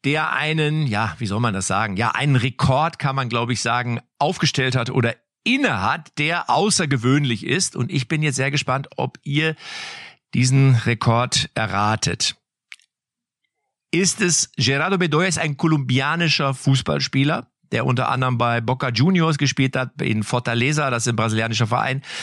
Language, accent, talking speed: German, German, 155 wpm